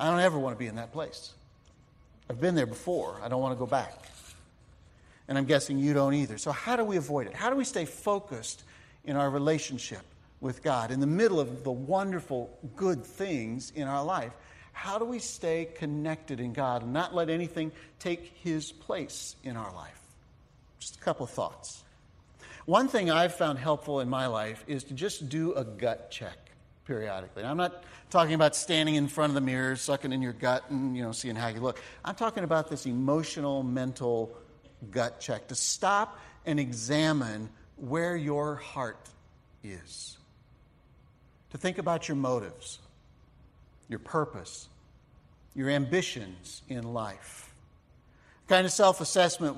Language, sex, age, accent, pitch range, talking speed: English, male, 50-69, American, 120-160 Hz, 175 wpm